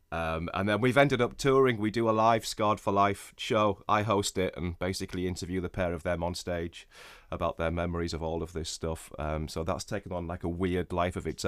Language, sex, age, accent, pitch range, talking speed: English, male, 30-49, British, 90-110 Hz, 240 wpm